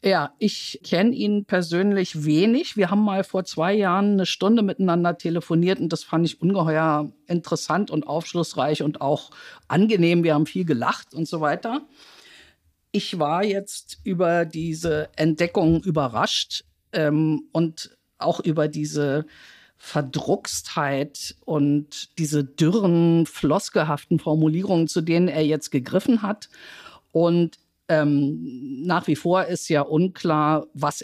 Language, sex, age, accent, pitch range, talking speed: German, female, 50-69, German, 150-180 Hz, 130 wpm